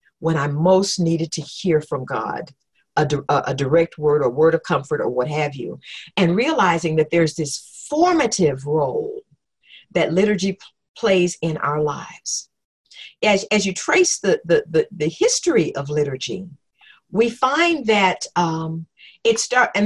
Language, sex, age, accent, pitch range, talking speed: English, female, 50-69, American, 155-215 Hz, 155 wpm